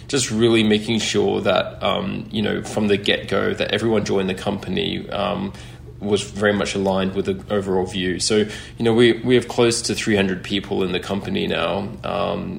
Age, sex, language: 20-39, male, English